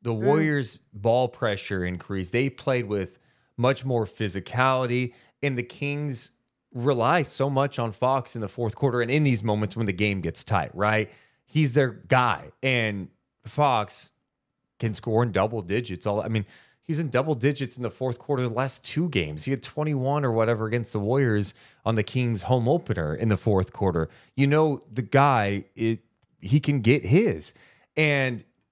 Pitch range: 110-135 Hz